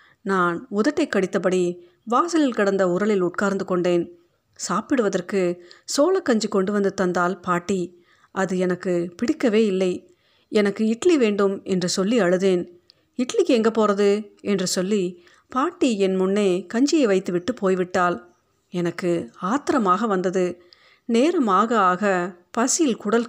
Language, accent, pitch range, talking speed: Tamil, native, 180-230 Hz, 110 wpm